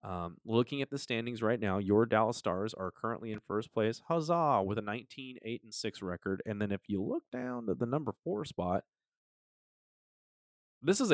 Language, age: English, 30-49